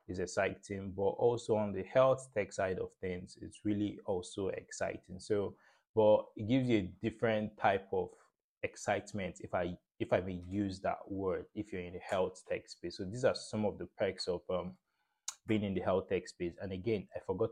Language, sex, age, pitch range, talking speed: English, male, 20-39, 95-110 Hz, 200 wpm